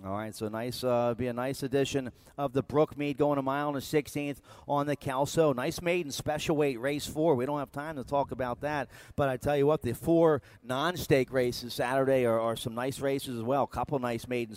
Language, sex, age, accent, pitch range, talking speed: English, male, 40-59, American, 125-145 Hz, 225 wpm